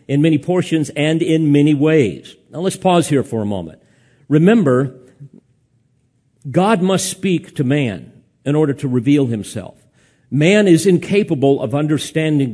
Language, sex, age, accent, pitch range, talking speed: English, male, 50-69, American, 120-160 Hz, 145 wpm